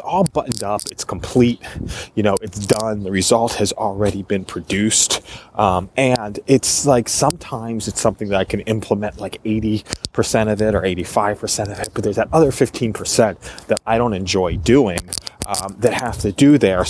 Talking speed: 190 wpm